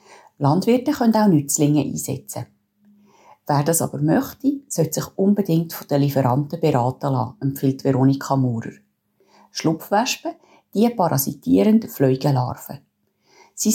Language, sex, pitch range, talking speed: German, female, 135-210 Hz, 110 wpm